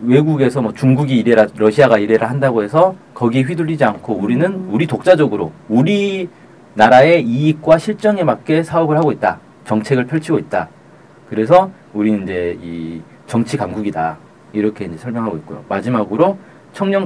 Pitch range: 115-170 Hz